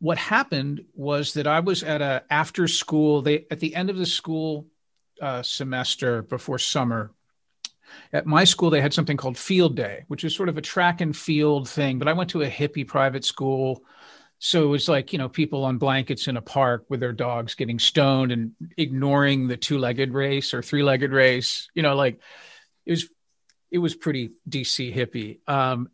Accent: American